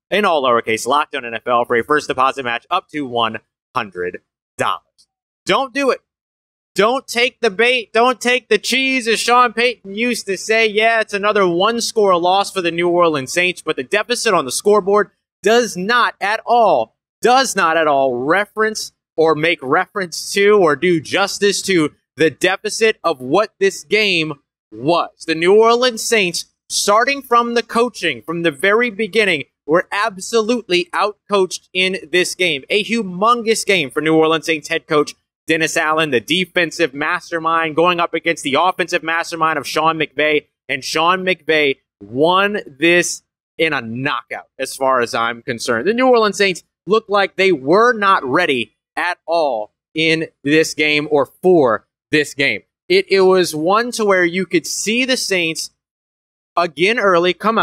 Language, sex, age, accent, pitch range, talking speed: English, male, 30-49, American, 155-215 Hz, 165 wpm